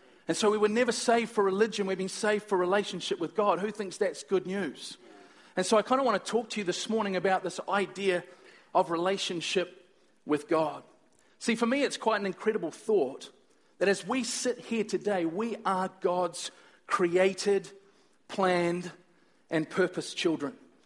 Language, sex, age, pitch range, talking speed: English, male, 40-59, 180-215 Hz, 175 wpm